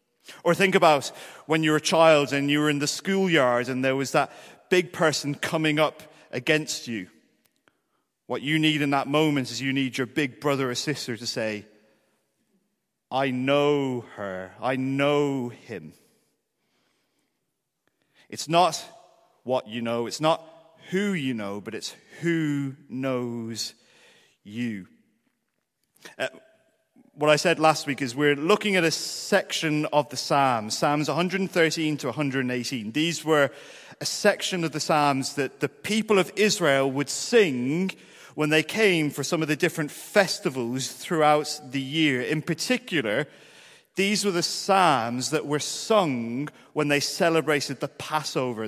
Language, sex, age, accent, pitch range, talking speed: English, male, 40-59, British, 135-165 Hz, 150 wpm